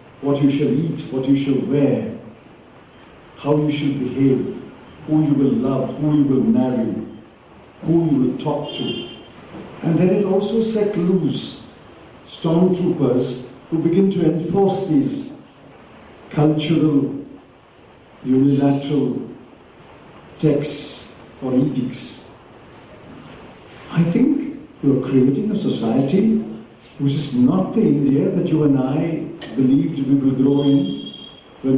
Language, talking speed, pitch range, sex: English, 120 wpm, 140-175 Hz, male